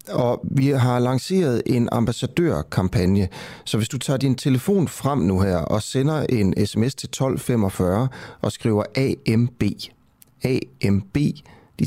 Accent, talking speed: native, 130 wpm